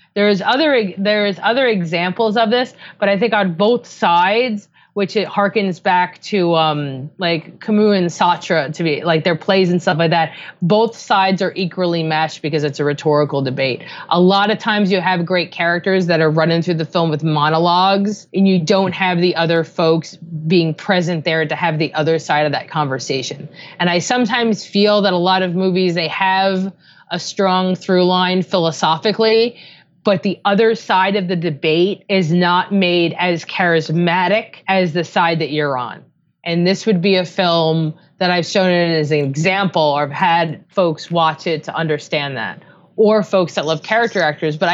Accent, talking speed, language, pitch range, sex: American, 185 wpm, English, 160-200 Hz, female